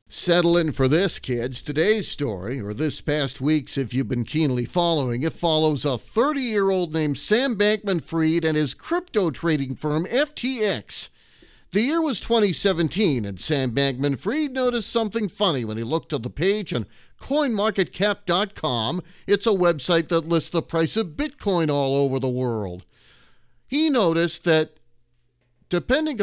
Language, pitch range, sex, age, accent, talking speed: English, 140-205 Hz, male, 40-59, American, 145 wpm